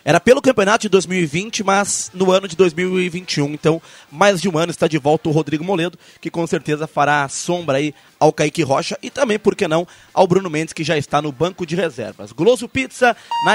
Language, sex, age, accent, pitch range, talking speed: Portuguese, male, 20-39, Brazilian, 165-200 Hz, 215 wpm